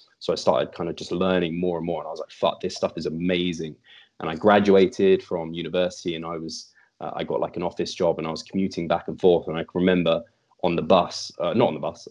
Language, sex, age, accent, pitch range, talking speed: English, male, 20-39, British, 85-100 Hz, 260 wpm